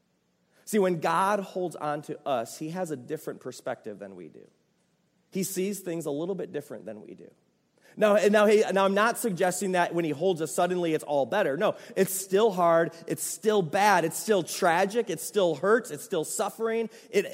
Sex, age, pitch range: male, 30-49, 170-210 Hz